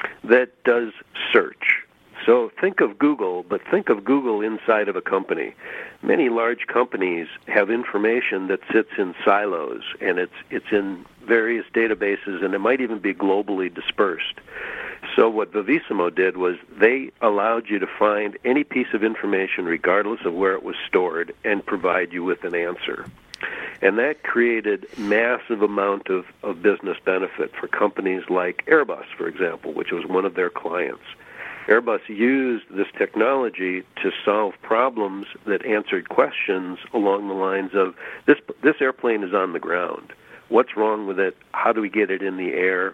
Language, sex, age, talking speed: English, male, 60-79, 165 wpm